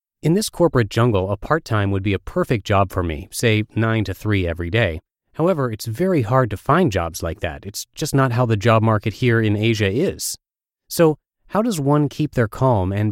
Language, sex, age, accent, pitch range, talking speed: English, male, 30-49, American, 100-130 Hz, 215 wpm